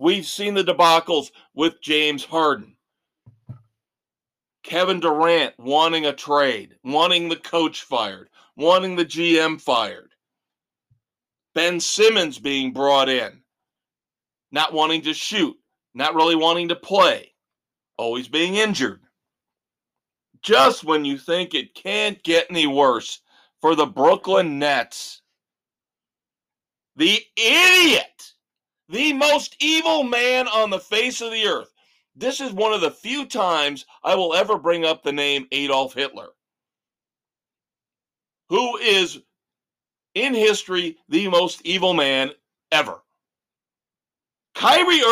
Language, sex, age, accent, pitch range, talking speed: English, male, 50-69, American, 155-225 Hz, 115 wpm